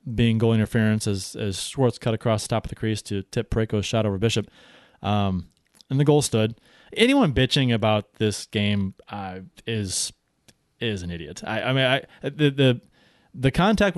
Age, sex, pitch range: 20-39, male, 105-140 Hz